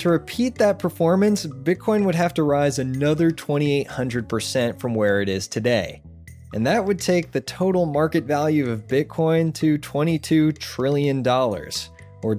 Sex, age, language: male, 20-39, English